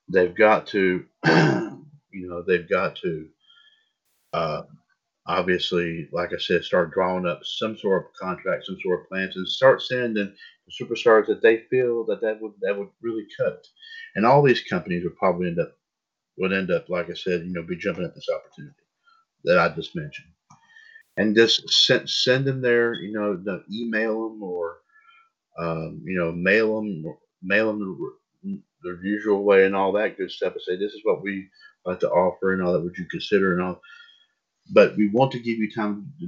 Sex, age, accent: male, 50-69, American